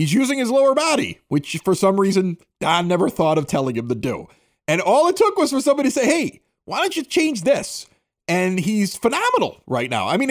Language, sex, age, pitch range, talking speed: English, male, 30-49, 145-210 Hz, 225 wpm